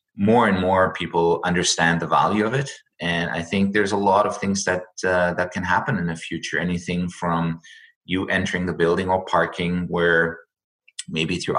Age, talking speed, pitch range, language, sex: 30-49, 185 wpm, 80-85 Hz, English, male